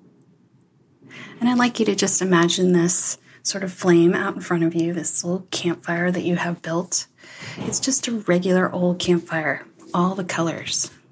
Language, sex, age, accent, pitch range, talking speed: English, female, 30-49, American, 165-190 Hz, 175 wpm